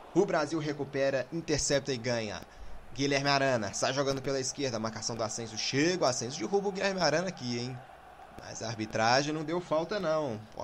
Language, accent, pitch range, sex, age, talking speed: Portuguese, Brazilian, 115-135 Hz, male, 20-39, 175 wpm